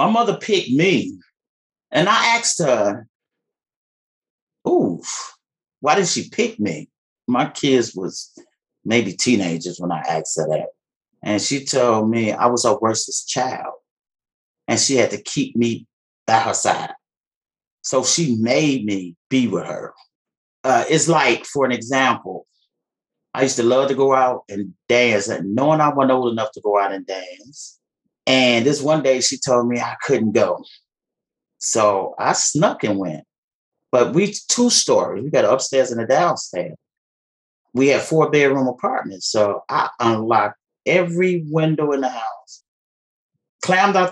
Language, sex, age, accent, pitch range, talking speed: English, male, 30-49, American, 115-150 Hz, 160 wpm